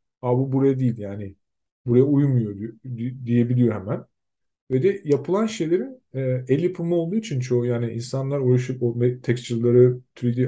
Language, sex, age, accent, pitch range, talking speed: Turkish, male, 50-69, native, 115-145 Hz, 130 wpm